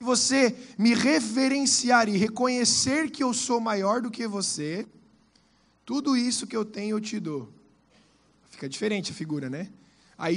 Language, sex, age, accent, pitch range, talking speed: Portuguese, male, 20-39, Brazilian, 180-235 Hz, 150 wpm